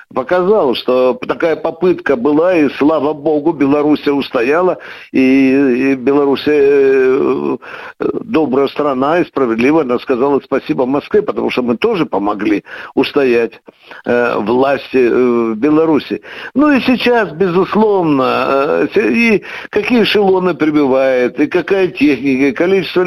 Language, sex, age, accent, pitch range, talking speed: Russian, male, 60-79, native, 150-225 Hz, 120 wpm